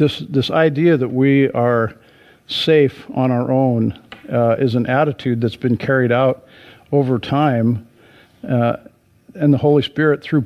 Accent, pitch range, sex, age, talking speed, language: American, 120-140 Hz, male, 50-69, 150 wpm, English